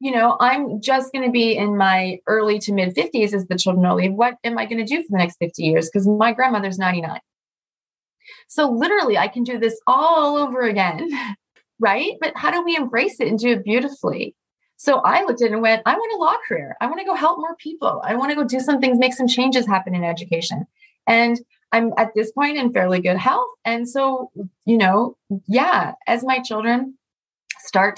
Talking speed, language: 220 wpm, English